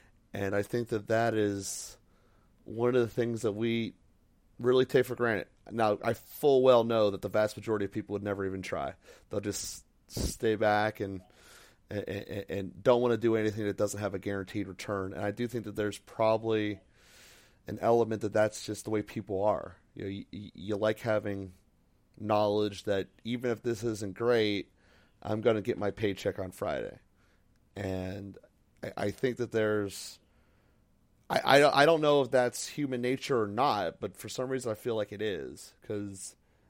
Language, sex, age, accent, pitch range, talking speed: English, male, 30-49, American, 100-115 Hz, 185 wpm